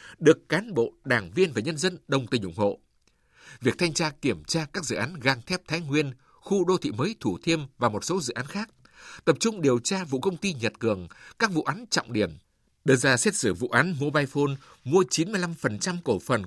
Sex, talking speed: male, 220 wpm